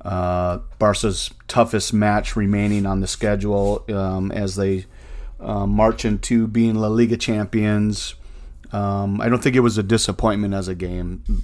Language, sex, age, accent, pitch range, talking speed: English, male, 30-49, American, 90-105 Hz, 150 wpm